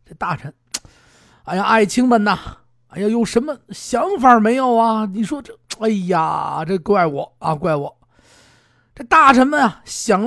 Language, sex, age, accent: Chinese, male, 50-69, native